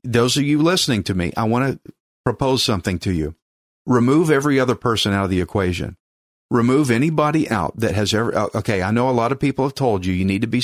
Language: English